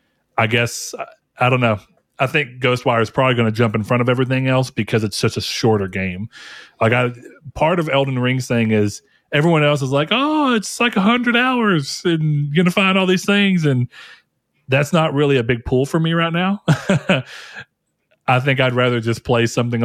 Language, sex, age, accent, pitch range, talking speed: English, male, 30-49, American, 110-145 Hz, 200 wpm